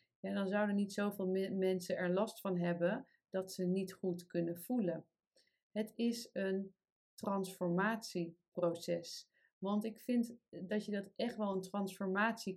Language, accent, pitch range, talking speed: Dutch, Dutch, 175-210 Hz, 145 wpm